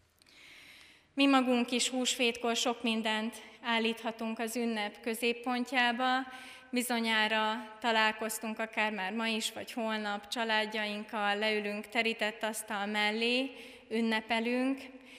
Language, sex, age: Hungarian, female, 20-39